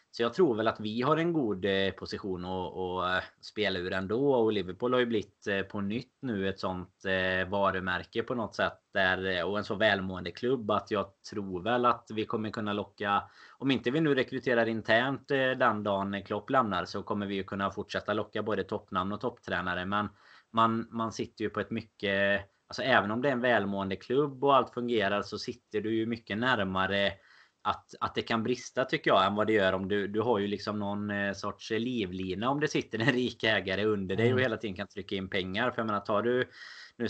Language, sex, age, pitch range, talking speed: Swedish, male, 20-39, 95-115 Hz, 210 wpm